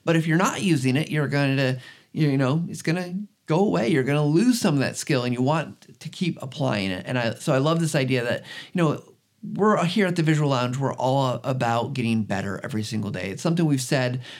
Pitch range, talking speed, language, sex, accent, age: 125-165 Hz, 245 wpm, English, male, American, 30-49